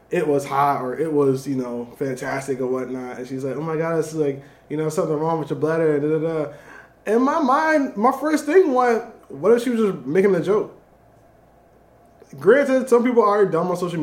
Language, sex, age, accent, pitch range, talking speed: English, male, 20-39, American, 140-190 Hz, 225 wpm